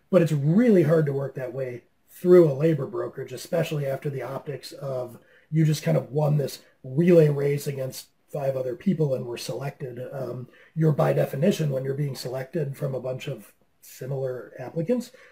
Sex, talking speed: male, 180 wpm